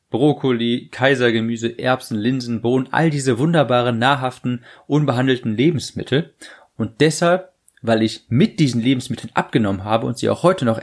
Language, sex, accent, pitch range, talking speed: German, male, German, 115-150 Hz, 140 wpm